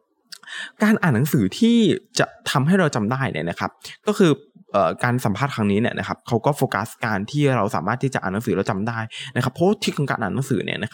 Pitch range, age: 100-140 Hz, 20-39